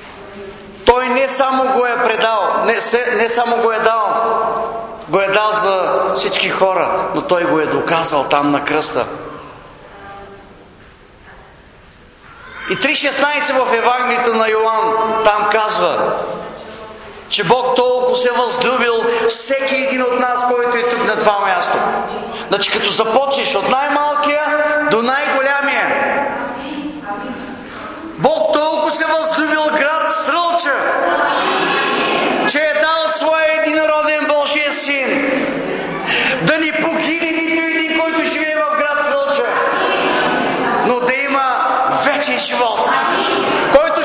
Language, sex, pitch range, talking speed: English, male, 225-300 Hz, 115 wpm